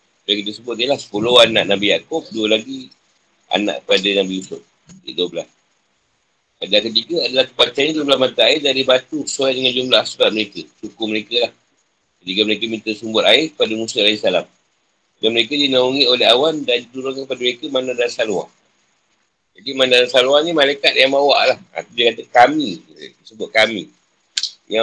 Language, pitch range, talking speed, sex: Malay, 110-145 Hz, 165 wpm, male